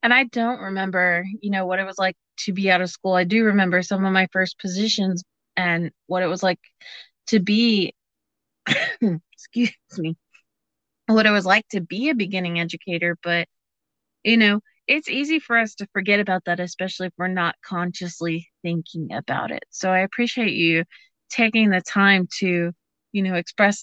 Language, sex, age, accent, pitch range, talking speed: English, female, 30-49, American, 175-220 Hz, 180 wpm